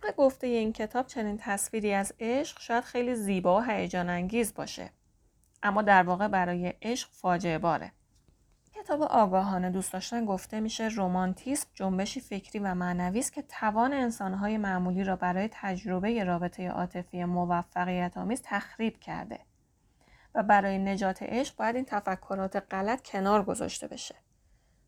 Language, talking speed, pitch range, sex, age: Persian, 135 wpm, 185-225 Hz, female, 30-49